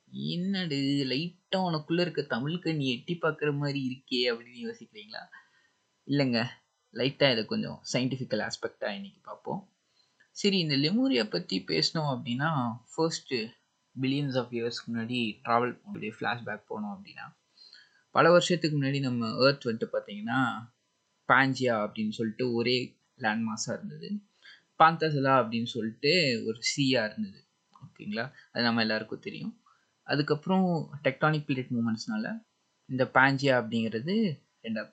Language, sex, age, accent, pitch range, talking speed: Tamil, male, 20-39, native, 120-175 Hz, 115 wpm